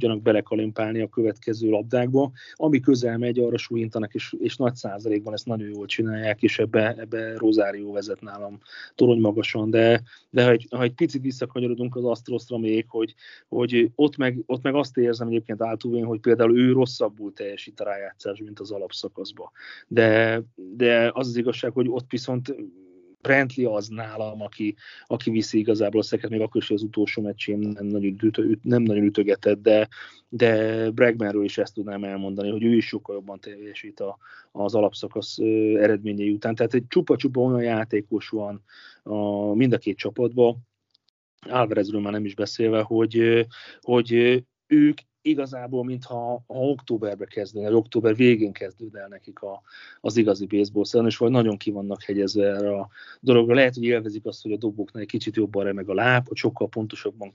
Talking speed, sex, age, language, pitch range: 165 wpm, male, 30-49, Hungarian, 105-120 Hz